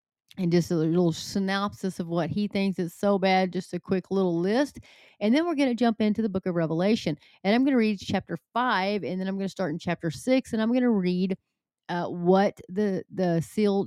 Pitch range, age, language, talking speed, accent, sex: 175-210 Hz, 30-49, English, 235 wpm, American, female